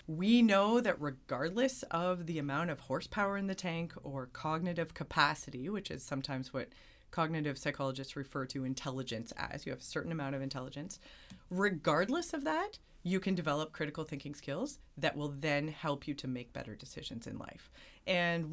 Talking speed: 170 wpm